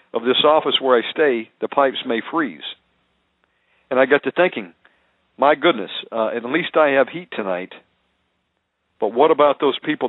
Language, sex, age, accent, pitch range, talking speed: English, male, 50-69, American, 105-135 Hz, 170 wpm